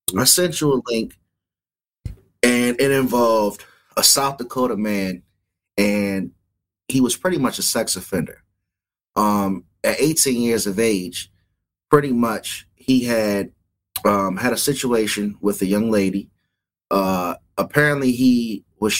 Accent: American